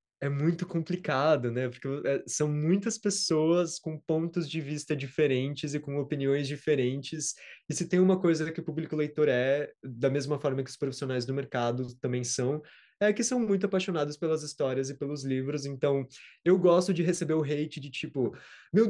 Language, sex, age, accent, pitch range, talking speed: Portuguese, male, 20-39, Brazilian, 130-170 Hz, 180 wpm